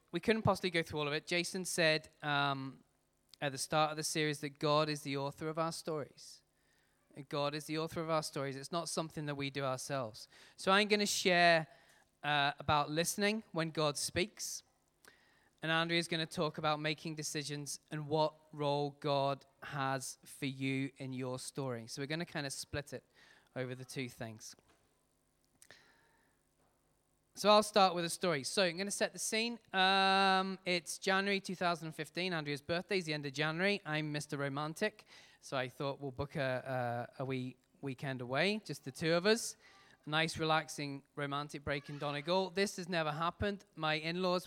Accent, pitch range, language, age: British, 140-170 Hz, English, 20-39